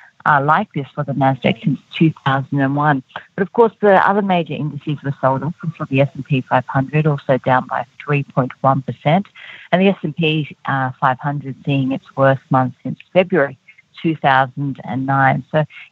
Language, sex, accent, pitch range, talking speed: English, female, Australian, 140-175 Hz, 145 wpm